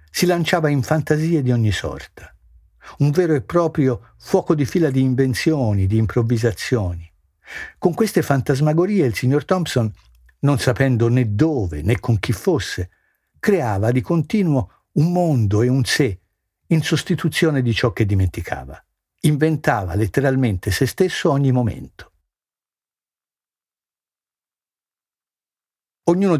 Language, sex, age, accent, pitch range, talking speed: Italian, male, 60-79, native, 95-150 Hz, 120 wpm